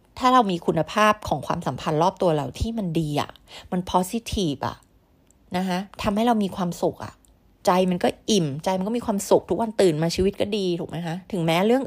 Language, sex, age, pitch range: Thai, female, 30-49, 165-210 Hz